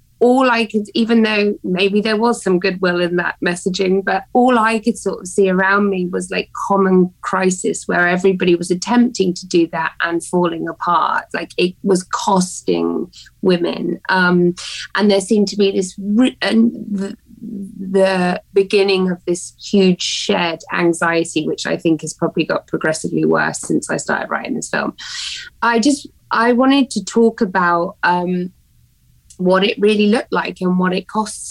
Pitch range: 175-225 Hz